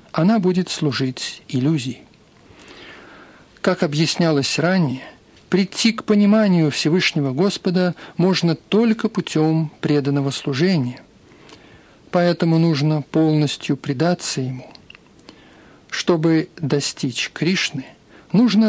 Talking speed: 85 wpm